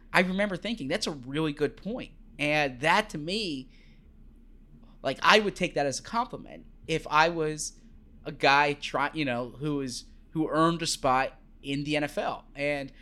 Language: English